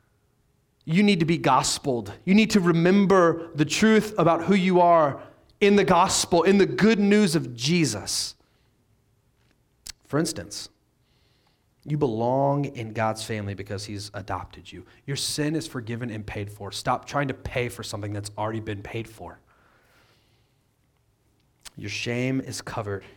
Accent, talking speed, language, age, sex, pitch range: American, 150 wpm, English, 30-49, male, 110-150 Hz